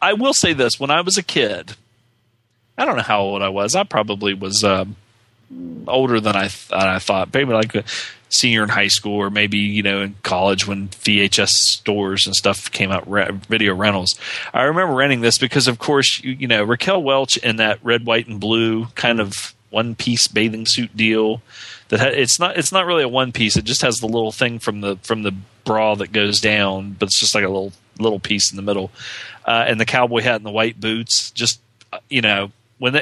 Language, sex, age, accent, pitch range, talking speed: English, male, 30-49, American, 105-130 Hz, 225 wpm